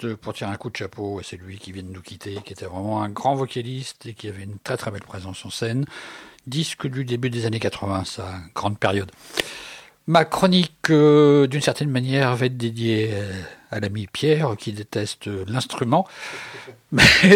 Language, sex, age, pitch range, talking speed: French, male, 60-79, 100-140 Hz, 185 wpm